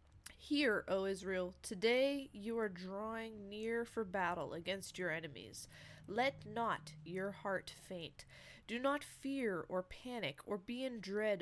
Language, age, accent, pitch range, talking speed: English, 20-39, American, 180-230 Hz, 140 wpm